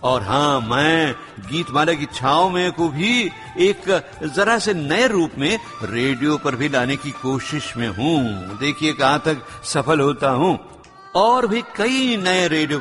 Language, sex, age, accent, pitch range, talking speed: Gujarati, male, 60-79, native, 135-180 Hz, 60 wpm